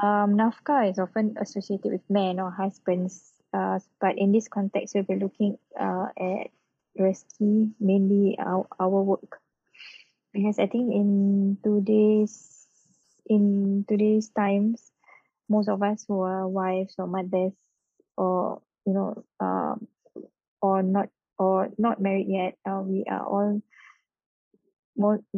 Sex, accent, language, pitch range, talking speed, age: female, Malaysian, English, 195-215 Hz, 130 wpm, 20-39